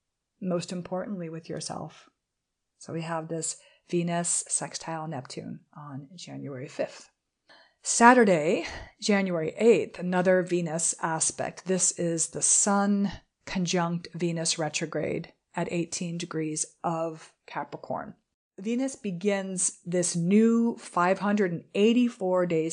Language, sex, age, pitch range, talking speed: English, female, 40-59, 165-200 Hz, 100 wpm